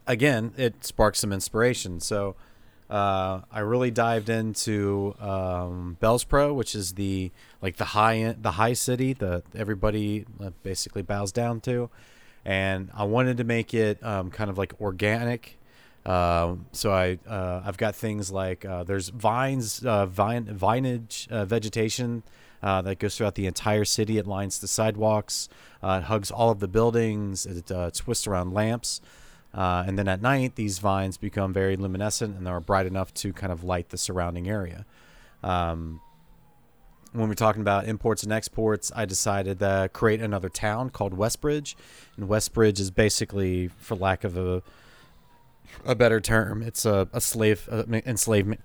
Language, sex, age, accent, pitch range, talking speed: English, male, 30-49, American, 95-115 Hz, 165 wpm